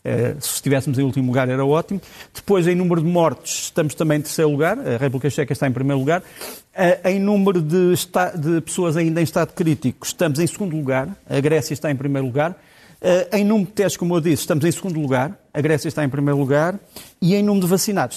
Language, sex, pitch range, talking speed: Portuguese, male, 140-170 Hz, 215 wpm